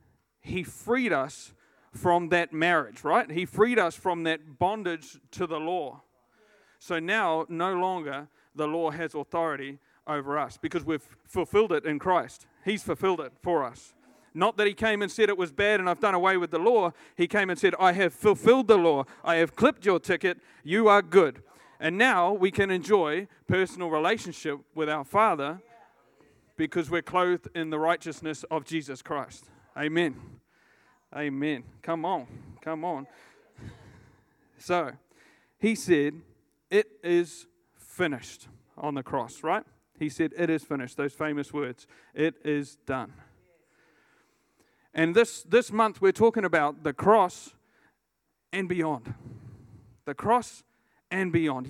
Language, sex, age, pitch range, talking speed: English, male, 40-59, 150-190 Hz, 150 wpm